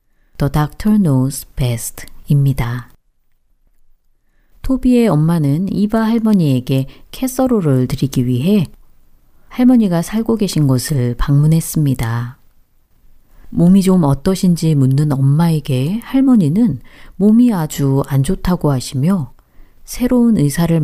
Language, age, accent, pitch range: Korean, 40-59, native, 135-200 Hz